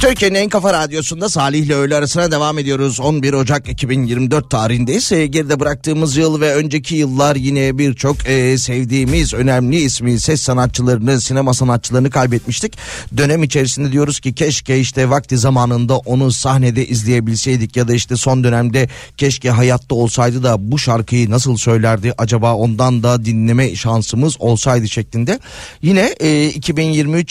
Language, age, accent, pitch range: Turkish, 30-49, native, 120-145 Hz